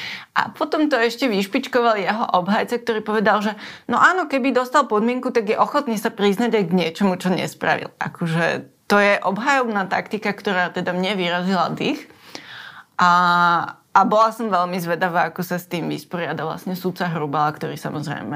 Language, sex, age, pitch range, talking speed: Slovak, female, 20-39, 165-205 Hz, 165 wpm